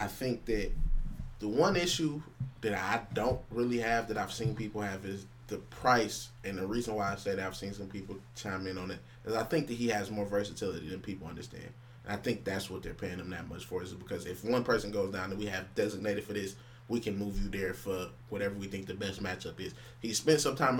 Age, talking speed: 20-39, 250 wpm